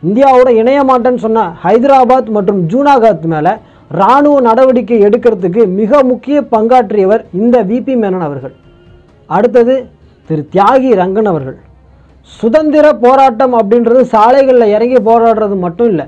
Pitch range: 180-250 Hz